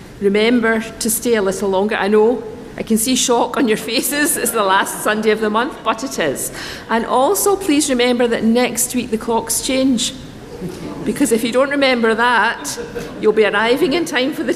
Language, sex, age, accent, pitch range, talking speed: English, female, 40-59, British, 195-240 Hz, 200 wpm